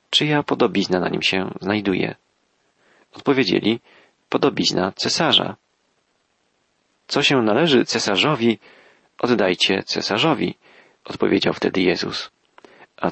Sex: male